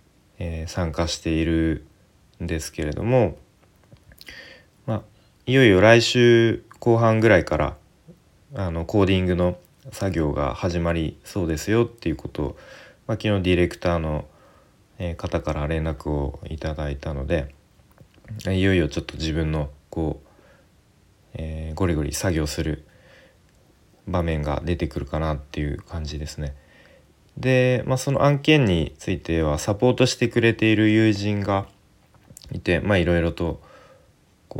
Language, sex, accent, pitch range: Japanese, male, native, 80-100 Hz